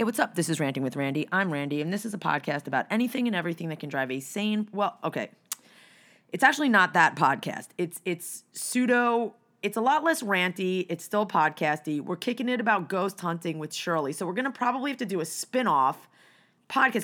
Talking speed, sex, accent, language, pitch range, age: 215 wpm, female, American, English, 160-210 Hz, 30-49